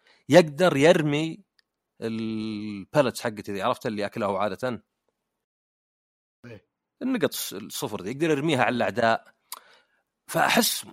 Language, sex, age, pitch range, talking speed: Arabic, male, 40-59, 110-160 Hz, 95 wpm